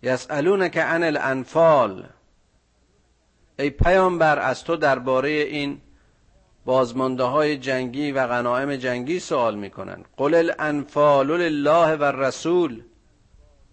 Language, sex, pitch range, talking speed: Persian, male, 115-145 Hz, 95 wpm